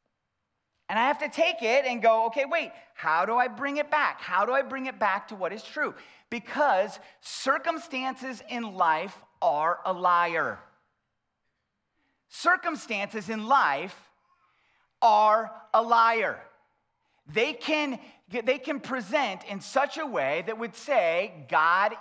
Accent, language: American, English